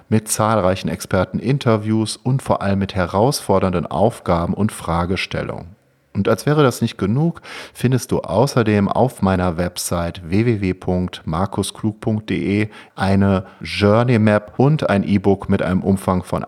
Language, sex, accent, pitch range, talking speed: German, male, German, 90-115 Hz, 120 wpm